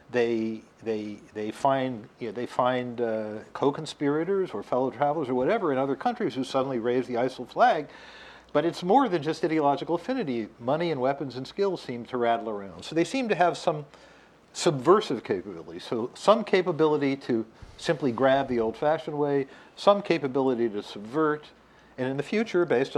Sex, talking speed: male, 165 wpm